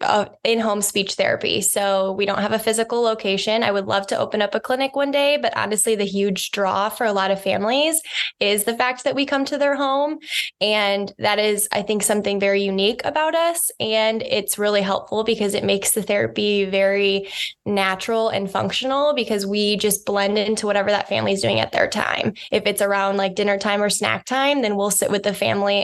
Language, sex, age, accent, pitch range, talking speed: English, female, 10-29, American, 200-230 Hz, 210 wpm